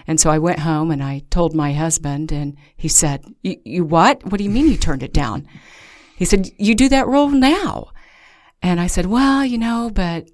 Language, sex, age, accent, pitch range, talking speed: English, female, 50-69, American, 145-180 Hz, 215 wpm